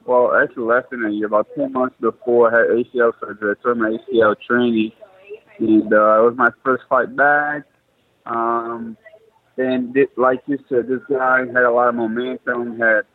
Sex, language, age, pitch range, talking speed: male, English, 20-39, 110-145 Hz, 185 wpm